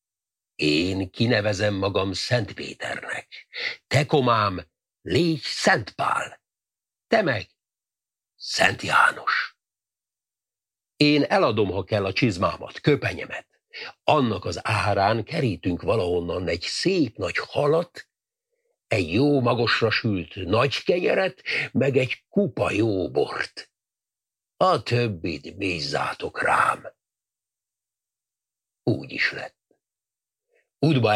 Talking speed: 95 wpm